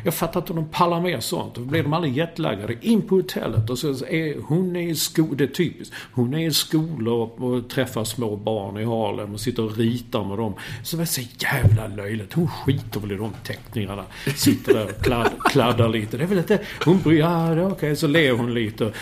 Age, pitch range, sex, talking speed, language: 50-69, 120-180 Hz, male, 225 wpm, English